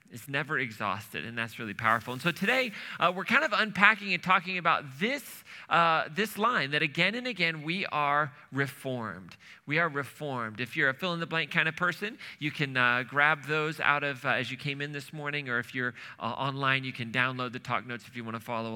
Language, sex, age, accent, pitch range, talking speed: English, male, 40-59, American, 130-185 Hz, 220 wpm